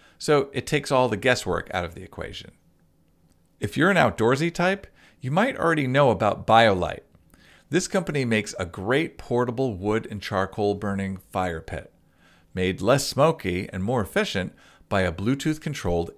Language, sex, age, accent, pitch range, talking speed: English, male, 50-69, American, 90-130 Hz, 160 wpm